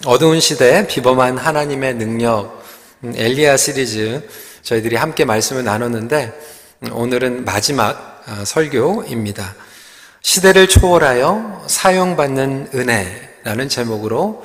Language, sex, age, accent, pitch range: Korean, male, 40-59, native, 115-175 Hz